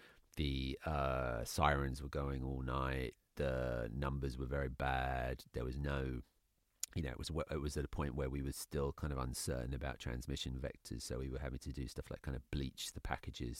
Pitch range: 65-75 Hz